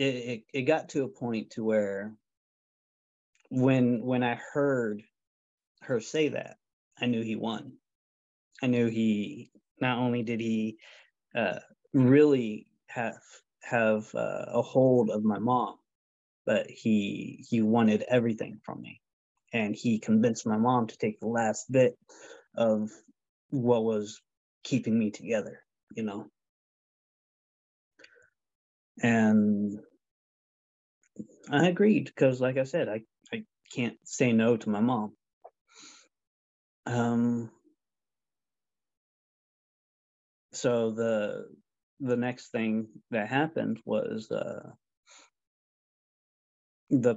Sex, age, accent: male, 20-39, American